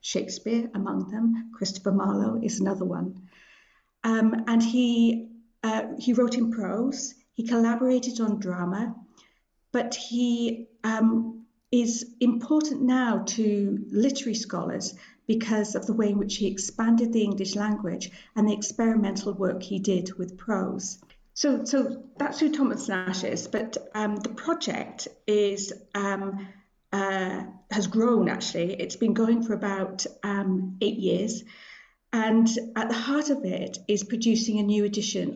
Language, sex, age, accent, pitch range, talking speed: English, female, 40-59, British, 195-230 Hz, 145 wpm